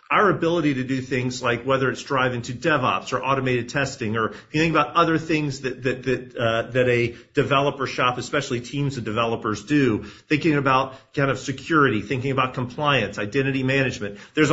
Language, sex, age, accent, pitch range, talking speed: English, male, 40-59, American, 125-145 Hz, 185 wpm